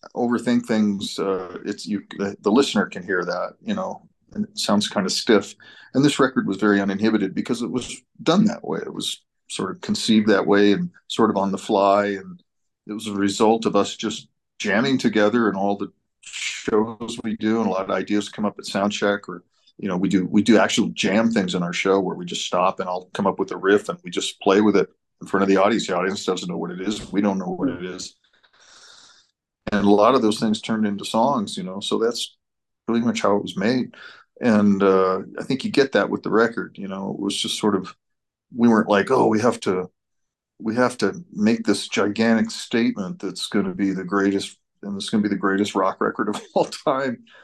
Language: English